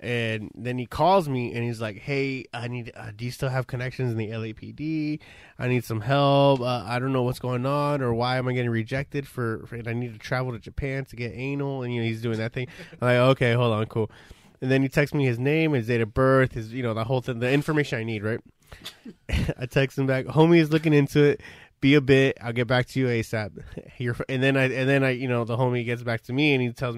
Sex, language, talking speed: male, English, 265 wpm